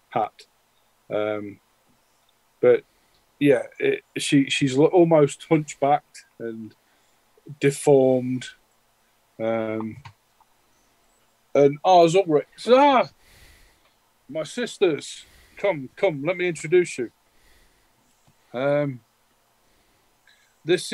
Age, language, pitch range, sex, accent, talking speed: 40-59, English, 110-145 Hz, male, British, 75 wpm